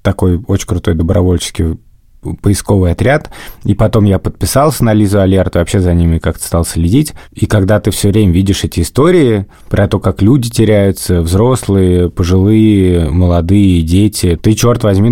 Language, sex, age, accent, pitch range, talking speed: Russian, male, 20-39, native, 85-105 Hz, 155 wpm